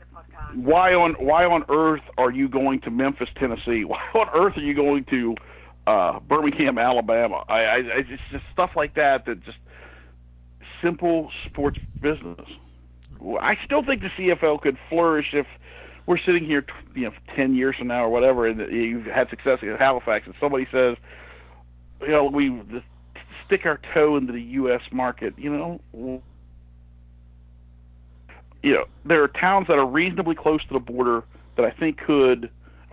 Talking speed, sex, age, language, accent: 165 wpm, male, 50-69, English, American